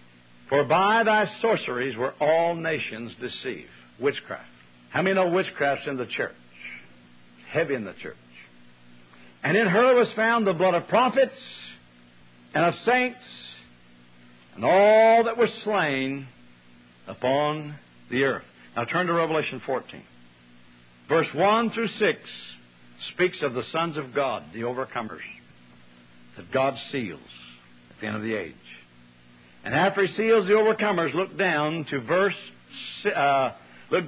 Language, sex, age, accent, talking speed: English, male, 60-79, American, 135 wpm